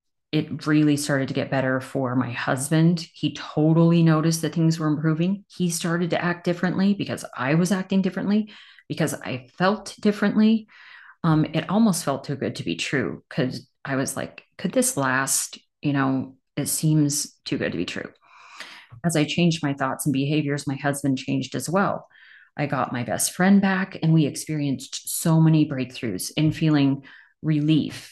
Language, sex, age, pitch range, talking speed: English, female, 30-49, 135-170 Hz, 175 wpm